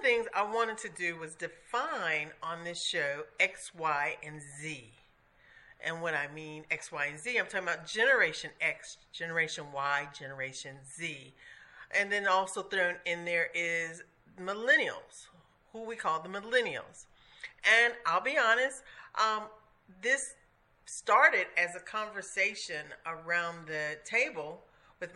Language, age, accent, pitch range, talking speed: English, 40-59, American, 165-230 Hz, 140 wpm